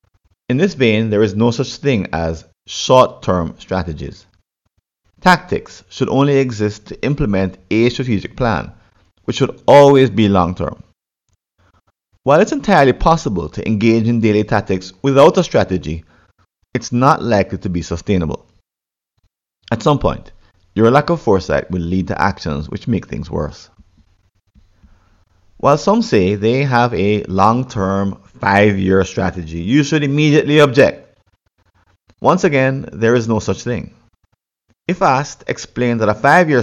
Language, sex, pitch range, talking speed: English, male, 90-130 Hz, 140 wpm